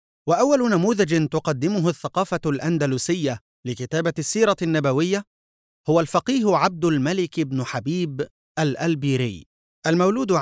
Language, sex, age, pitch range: Arabic, male, 30-49, 130-170 Hz